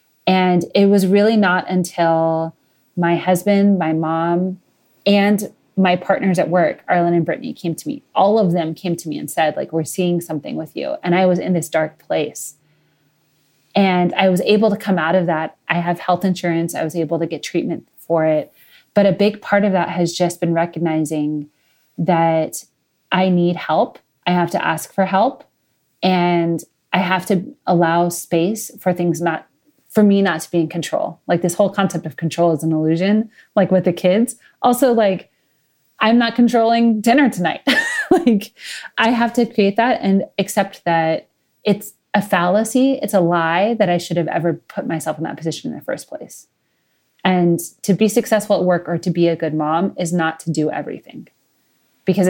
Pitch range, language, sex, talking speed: 165-200 Hz, English, female, 190 wpm